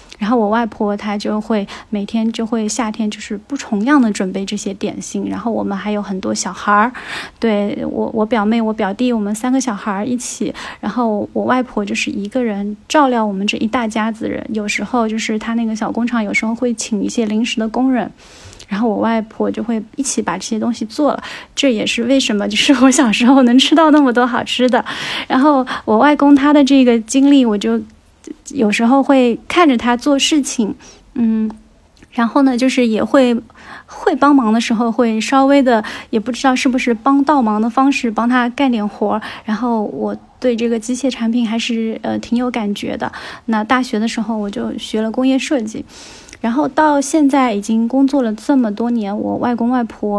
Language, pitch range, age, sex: Chinese, 220-260 Hz, 20-39, female